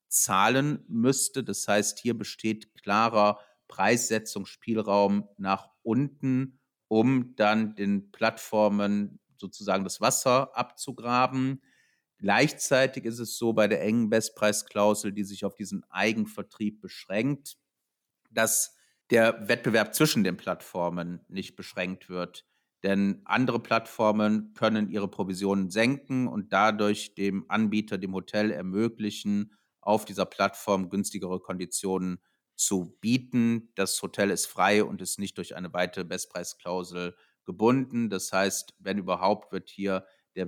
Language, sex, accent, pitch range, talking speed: German, male, German, 100-120 Hz, 120 wpm